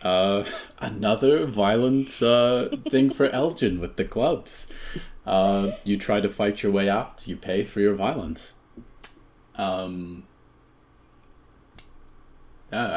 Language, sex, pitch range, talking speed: English, male, 90-130 Hz, 115 wpm